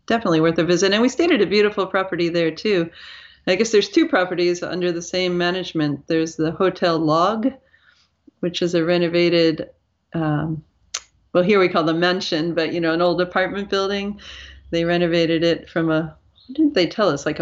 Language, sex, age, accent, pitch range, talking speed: English, female, 40-59, American, 155-185 Hz, 185 wpm